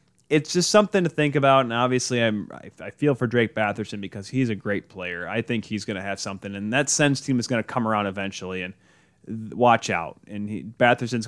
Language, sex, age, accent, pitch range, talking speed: English, male, 30-49, American, 105-140 Hz, 235 wpm